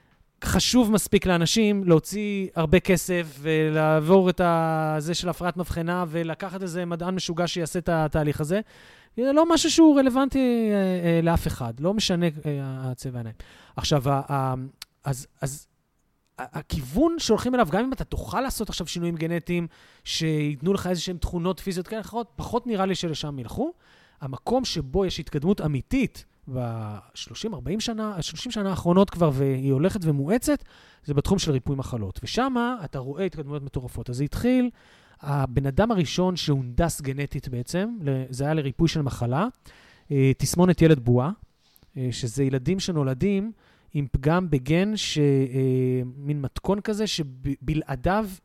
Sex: male